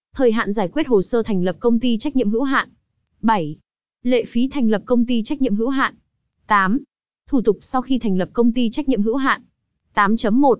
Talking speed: 215 wpm